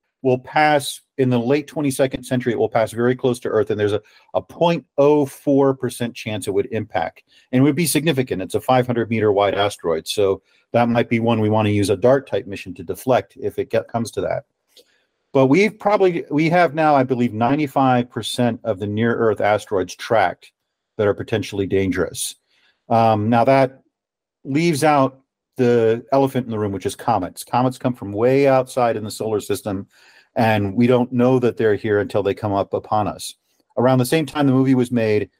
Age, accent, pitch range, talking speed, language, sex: 40-59, American, 110-135 Hz, 190 wpm, English, male